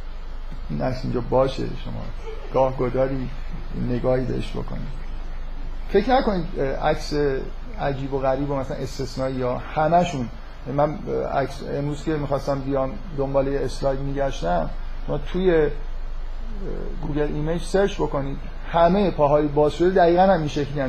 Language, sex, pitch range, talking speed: Persian, male, 140-175 Hz, 125 wpm